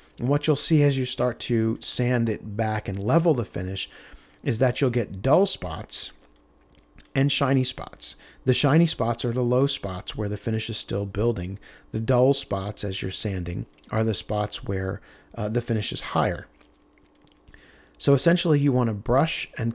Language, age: English, 40-59